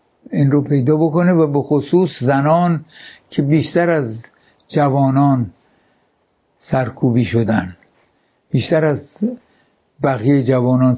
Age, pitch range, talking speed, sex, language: 60-79, 130-160 Hz, 100 wpm, male, English